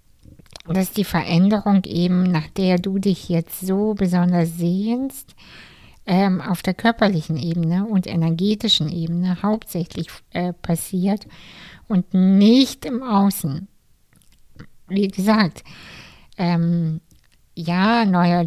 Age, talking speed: 60-79, 105 wpm